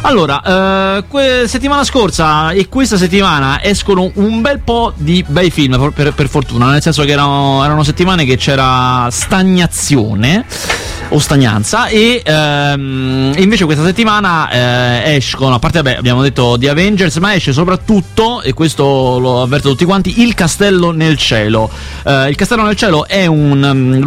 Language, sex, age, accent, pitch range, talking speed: Italian, male, 30-49, native, 125-175 Hz, 160 wpm